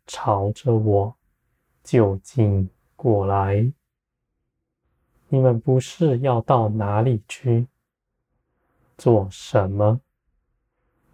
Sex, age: male, 20-39